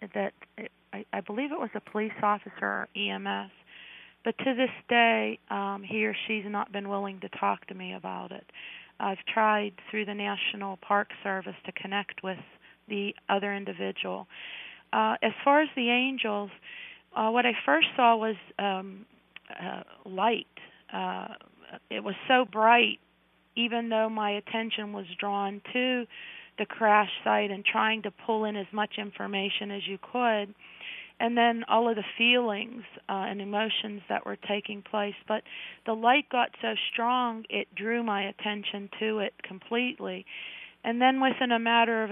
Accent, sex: American, female